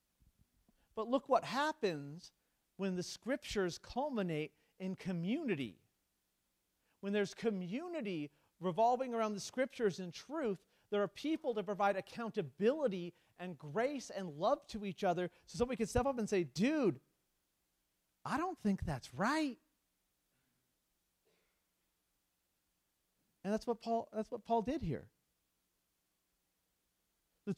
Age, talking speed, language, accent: 40-59, 120 wpm, English, American